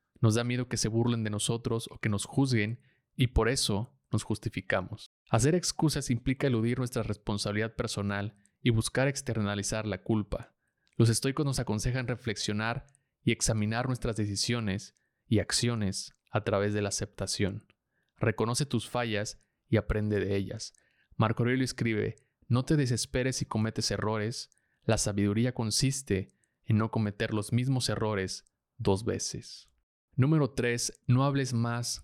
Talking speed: 145 wpm